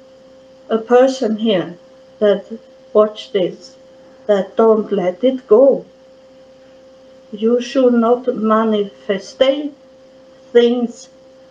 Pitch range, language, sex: 220-265 Hz, English, female